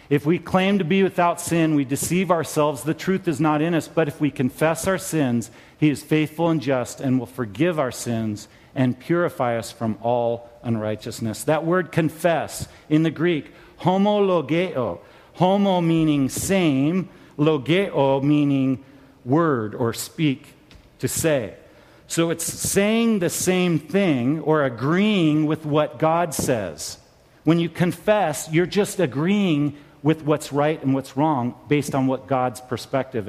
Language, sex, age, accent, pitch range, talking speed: English, male, 50-69, American, 125-165 Hz, 150 wpm